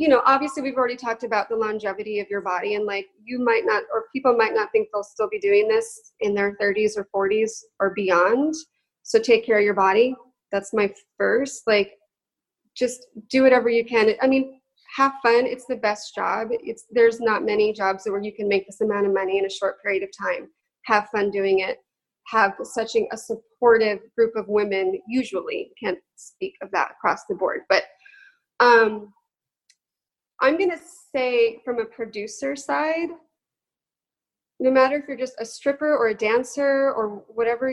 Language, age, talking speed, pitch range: English, 20-39, 185 wpm, 215-270 Hz